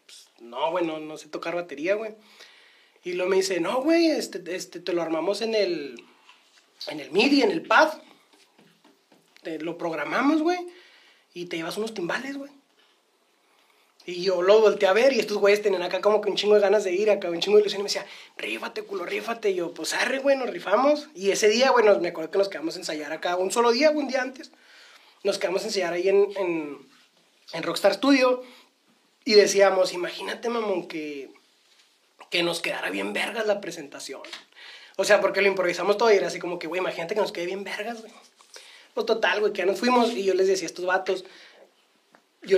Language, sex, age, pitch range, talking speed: Spanish, male, 30-49, 180-245 Hz, 210 wpm